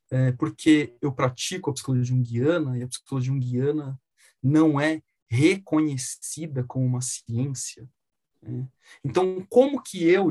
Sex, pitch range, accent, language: male, 150-220 Hz, Brazilian, Portuguese